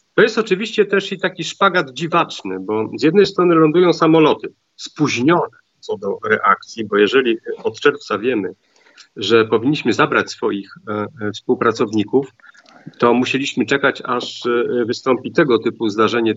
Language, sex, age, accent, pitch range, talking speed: Polish, male, 40-59, native, 115-165 Hz, 130 wpm